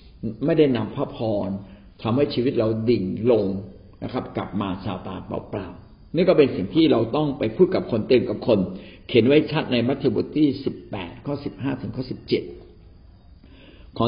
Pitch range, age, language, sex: 105-135 Hz, 60-79, Thai, male